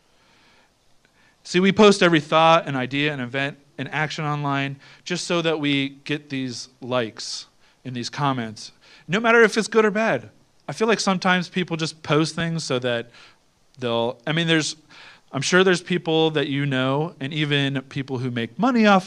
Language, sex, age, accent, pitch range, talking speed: English, male, 40-59, American, 130-170 Hz, 180 wpm